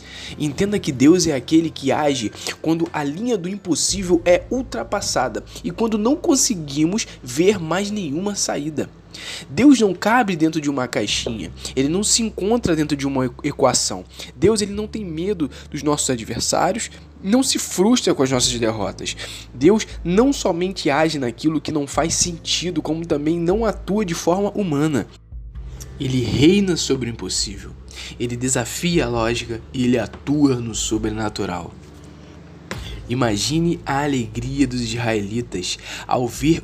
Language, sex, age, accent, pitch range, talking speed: Portuguese, male, 20-39, Brazilian, 120-175 Hz, 145 wpm